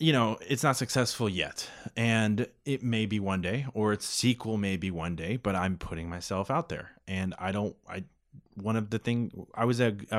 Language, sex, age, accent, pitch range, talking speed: English, male, 20-39, American, 90-115 Hz, 210 wpm